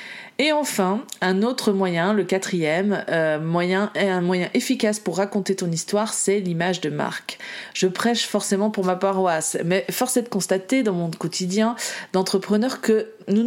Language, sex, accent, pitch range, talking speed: French, female, French, 180-220 Hz, 165 wpm